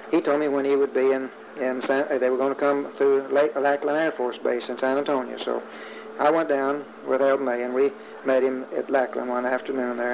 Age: 60-79